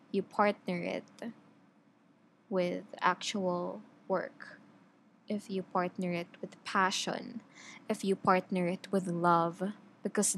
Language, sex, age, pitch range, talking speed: English, female, 20-39, 180-230 Hz, 110 wpm